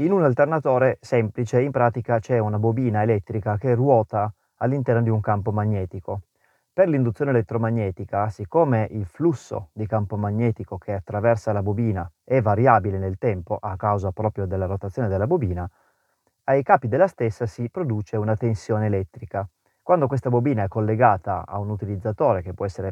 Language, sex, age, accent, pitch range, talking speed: Italian, male, 30-49, native, 100-120 Hz, 160 wpm